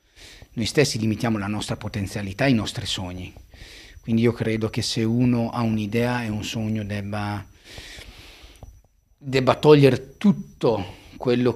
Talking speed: 135 wpm